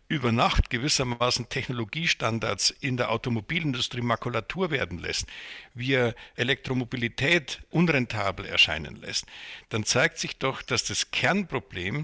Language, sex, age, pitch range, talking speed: German, male, 60-79, 115-145 Hz, 110 wpm